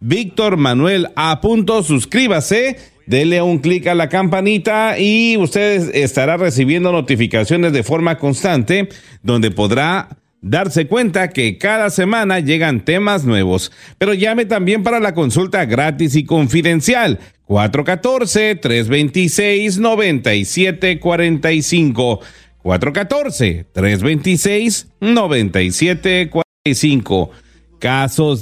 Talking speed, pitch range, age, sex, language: 85 wpm, 130-190 Hz, 40-59, male, English